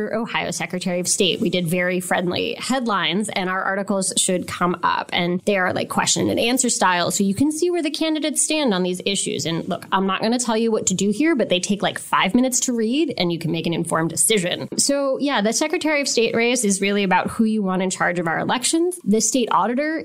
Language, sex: English, female